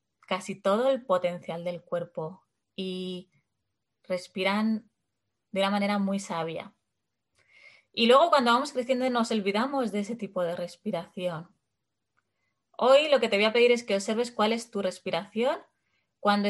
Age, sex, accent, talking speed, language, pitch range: 20-39, female, Spanish, 145 wpm, Spanish, 185-225 Hz